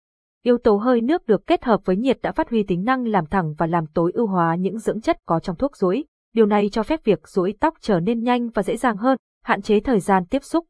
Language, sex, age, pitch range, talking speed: Vietnamese, female, 20-39, 180-250 Hz, 270 wpm